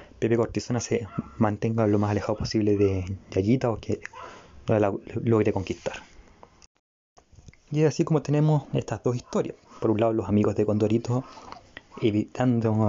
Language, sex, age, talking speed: Spanish, male, 20-39, 145 wpm